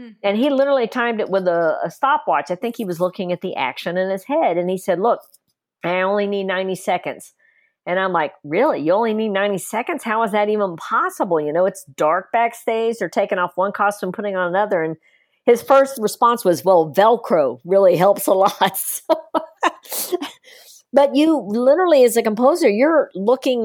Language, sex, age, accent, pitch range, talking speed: English, female, 50-69, American, 180-235 Hz, 190 wpm